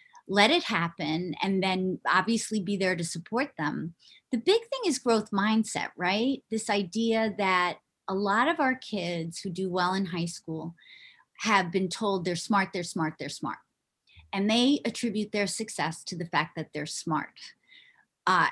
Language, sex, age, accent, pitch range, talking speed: English, female, 40-59, American, 185-250 Hz, 170 wpm